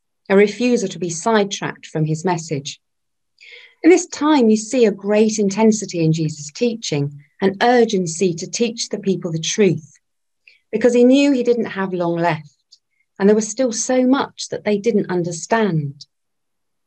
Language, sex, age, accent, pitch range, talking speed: English, female, 40-59, British, 160-220 Hz, 160 wpm